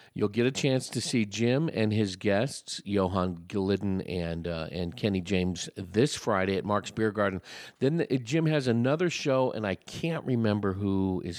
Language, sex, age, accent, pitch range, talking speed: English, male, 50-69, American, 90-110 Hz, 190 wpm